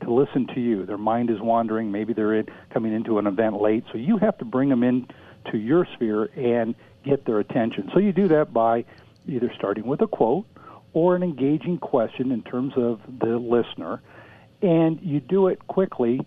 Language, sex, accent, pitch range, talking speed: English, male, American, 110-160 Hz, 195 wpm